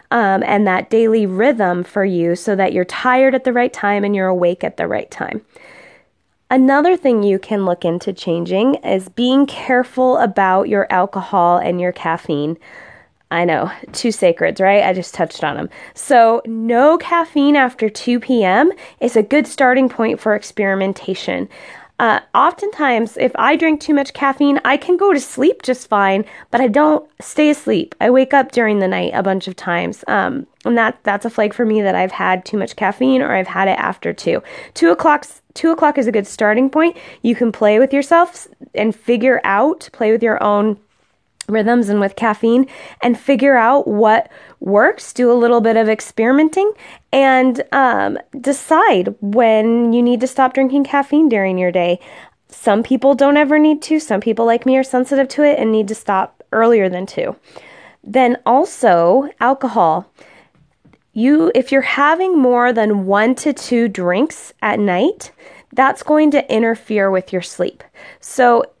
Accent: American